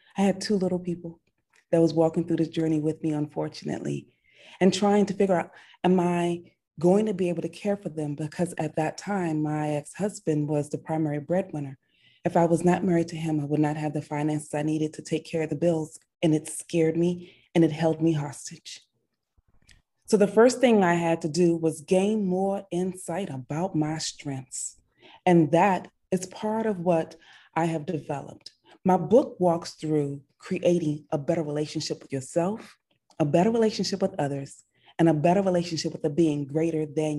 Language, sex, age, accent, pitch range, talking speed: English, female, 20-39, American, 155-185 Hz, 190 wpm